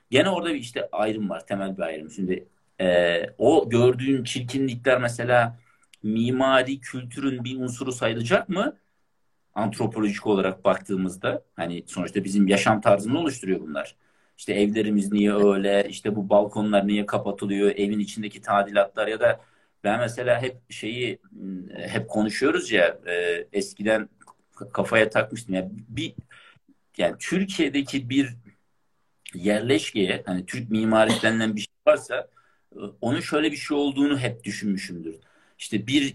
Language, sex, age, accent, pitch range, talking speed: Turkish, male, 50-69, native, 100-125 Hz, 130 wpm